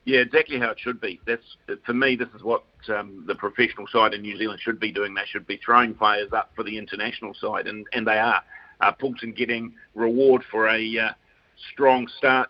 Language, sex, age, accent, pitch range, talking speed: English, male, 50-69, Australian, 110-125 Hz, 215 wpm